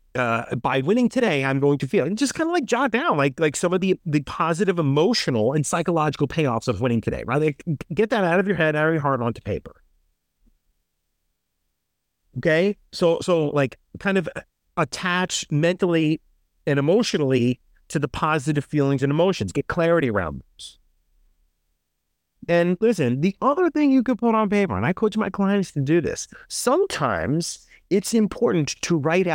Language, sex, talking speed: English, male, 175 wpm